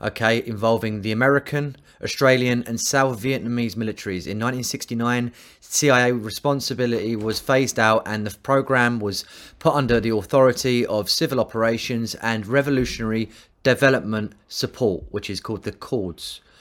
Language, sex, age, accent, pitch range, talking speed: English, male, 30-49, British, 110-130 Hz, 130 wpm